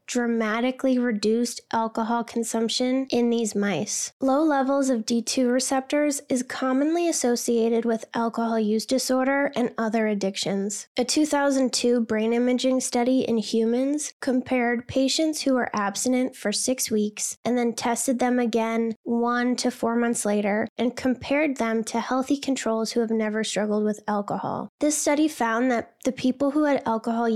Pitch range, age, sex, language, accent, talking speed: 225-255 Hz, 10-29, female, English, American, 150 wpm